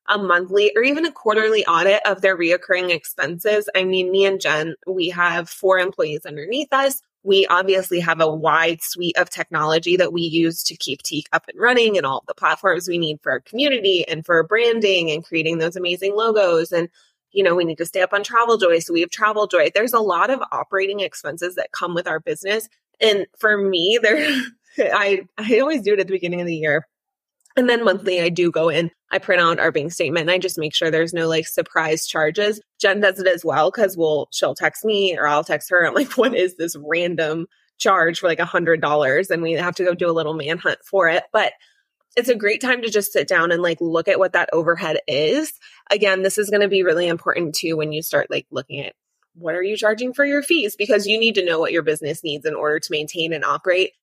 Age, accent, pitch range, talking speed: 20-39, American, 165-210 Hz, 235 wpm